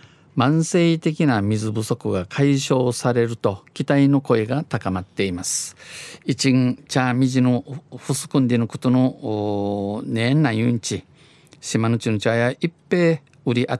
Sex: male